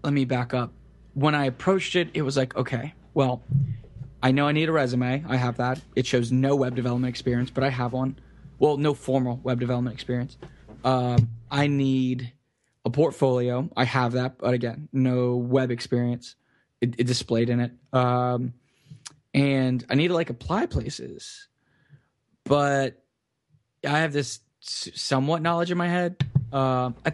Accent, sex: American, male